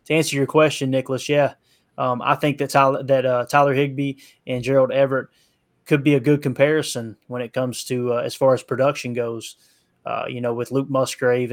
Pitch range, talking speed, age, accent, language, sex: 125-150 Hz, 200 wpm, 20-39, American, English, male